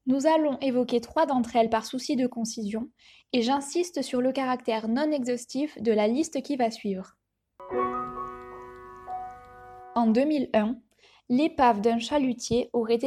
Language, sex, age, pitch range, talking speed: French, female, 10-29, 225-280 Hz, 135 wpm